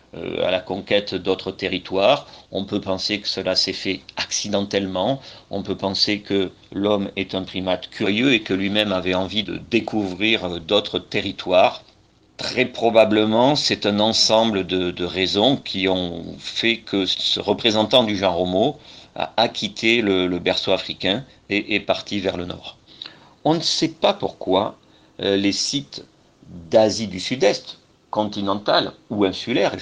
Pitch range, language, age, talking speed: 95-115 Hz, French, 40-59, 145 wpm